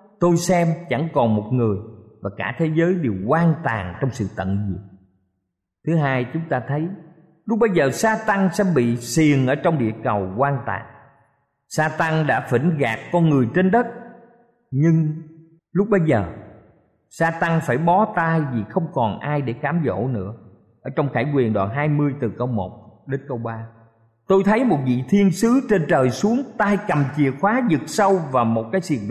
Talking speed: 190 wpm